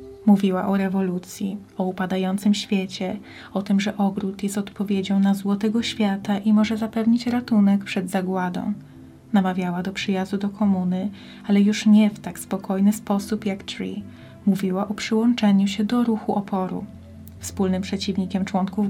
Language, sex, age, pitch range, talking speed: Polish, female, 20-39, 195-215 Hz, 145 wpm